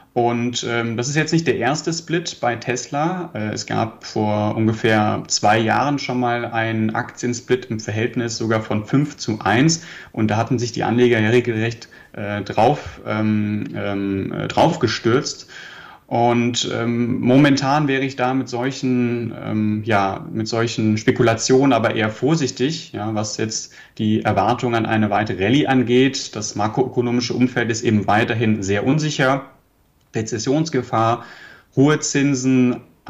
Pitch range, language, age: 105-125 Hz, German, 30-49